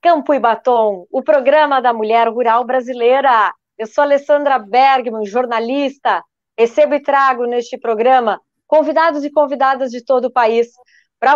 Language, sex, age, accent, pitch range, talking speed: Portuguese, female, 20-39, Brazilian, 235-295 Hz, 145 wpm